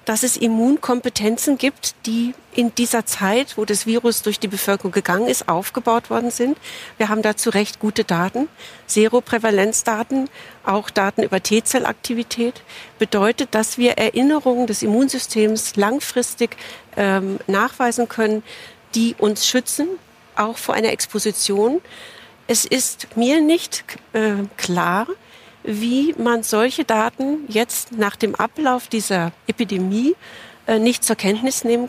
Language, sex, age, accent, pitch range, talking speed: German, female, 50-69, German, 210-245 Hz, 125 wpm